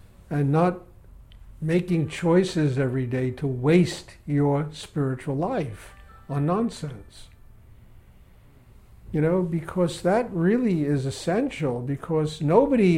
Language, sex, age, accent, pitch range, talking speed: English, male, 60-79, American, 135-185 Hz, 100 wpm